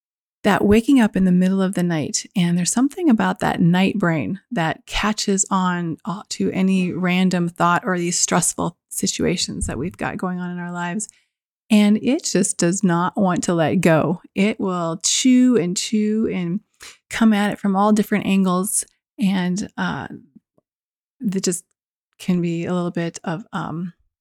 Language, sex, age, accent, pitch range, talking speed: English, female, 30-49, American, 175-205 Hz, 170 wpm